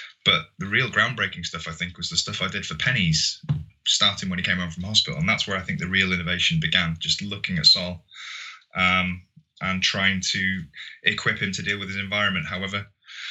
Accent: British